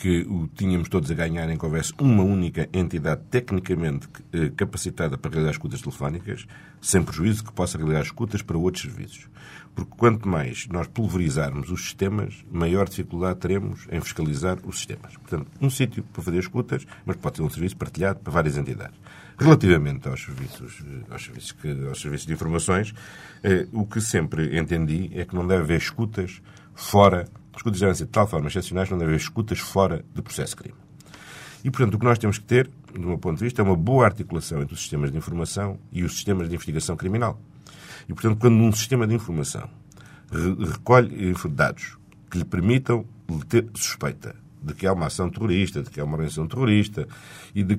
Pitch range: 85-110 Hz